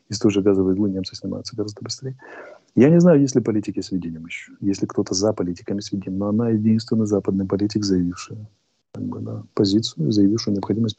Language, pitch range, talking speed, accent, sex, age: Russian, 95-125 Hz, 175 wpm, native, male, 30-49